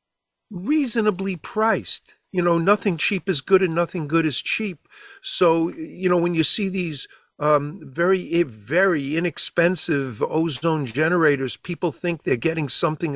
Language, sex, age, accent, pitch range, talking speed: English, male, 50-69, American, 135-175 Hz, 140 wpm